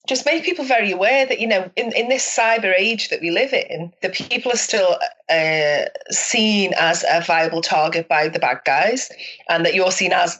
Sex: female